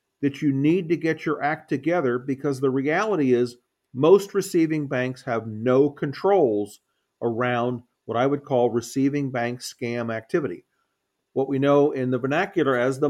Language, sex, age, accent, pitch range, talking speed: English, male, 50-69, American, 125-155 Hz, 160 wpm